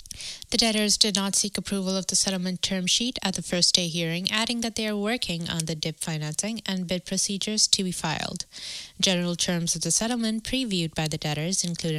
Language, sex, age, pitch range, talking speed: English, female, 20-39, 165-215 Hz, 205 wpm